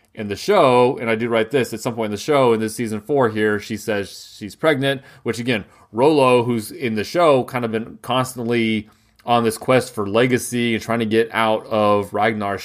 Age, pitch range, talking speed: 30-49, 105-120 Hz, 220 wpm